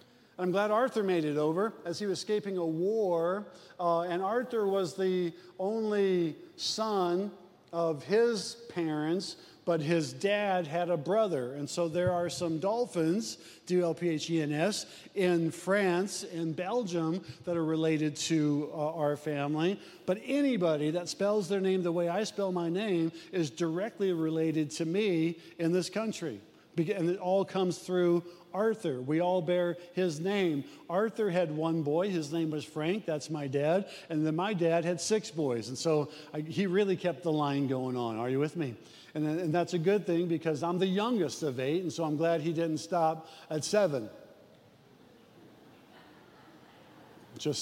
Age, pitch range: 50-69, 160-195 Hz